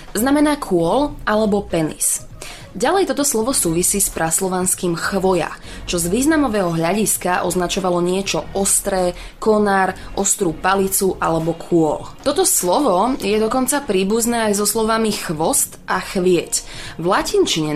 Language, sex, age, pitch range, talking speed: Slovak, female, 20-39, 170-210 Hz, 120 wpm